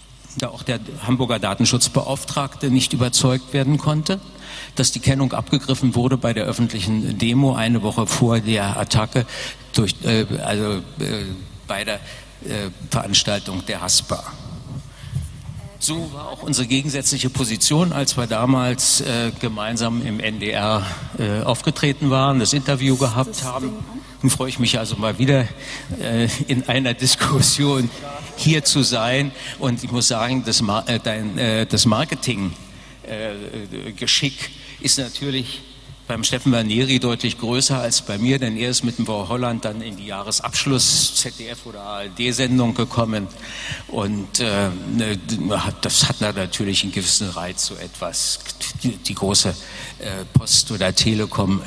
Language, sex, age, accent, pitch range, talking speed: German, male, 60-79, German, 110-135 Hz, 125 wpm